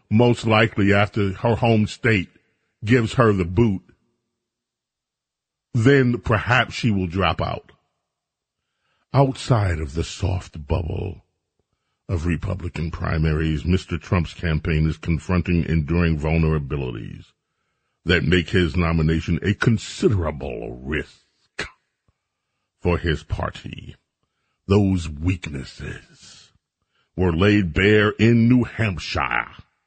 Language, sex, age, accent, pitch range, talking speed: English, male, 40-59, American, 85-120 Hz, 100 wpm